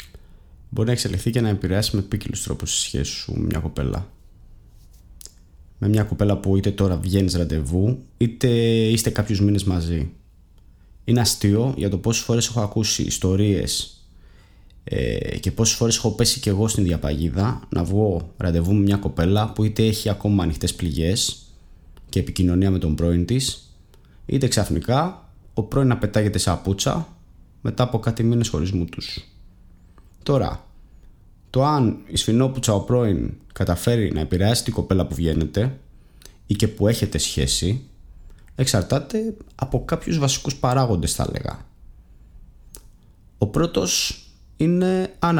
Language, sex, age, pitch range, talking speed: Greek, male, 20-39, 90-120 Hz, 140 wpm